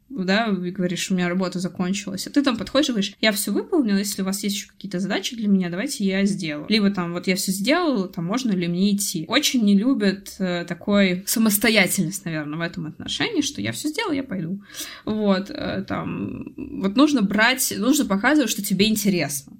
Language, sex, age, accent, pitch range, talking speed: Russian, female, 20-39, native, 185-225 Hz, 200 wpm